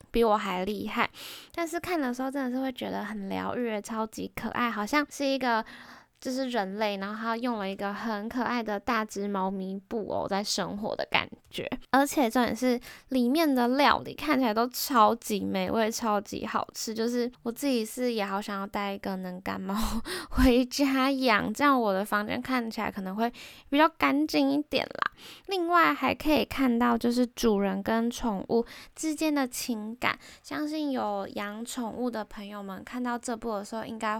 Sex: female